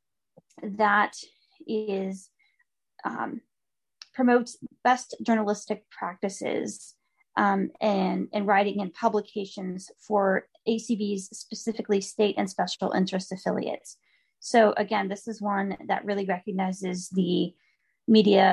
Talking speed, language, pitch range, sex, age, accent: 105 wpm, English, 195-235 Hz, female, 20-39, American